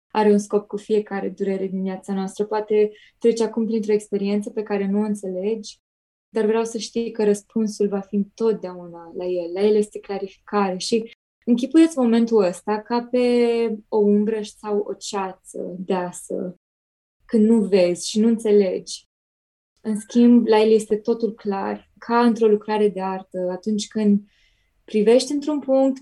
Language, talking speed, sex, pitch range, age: Romanian, 160 wpm, female, 195-225 Hz, 20-39